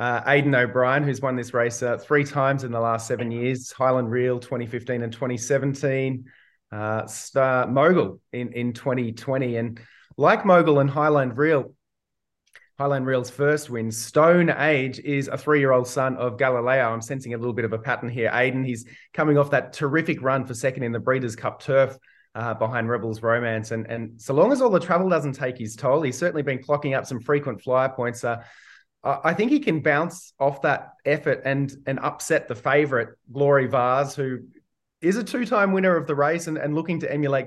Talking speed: 195 wpm